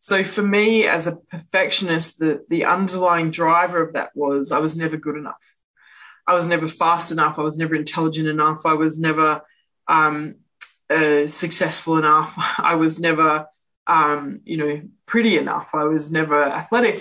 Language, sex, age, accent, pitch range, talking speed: English, female, 20-39, Australian, 155-200 Hz, 165 wpm